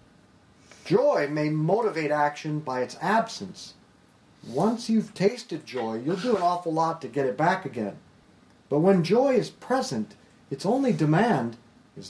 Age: 40-59